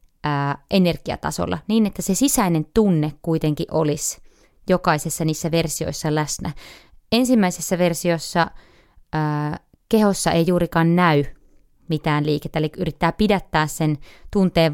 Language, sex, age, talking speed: Finnish, female, 20-39, 105 wpm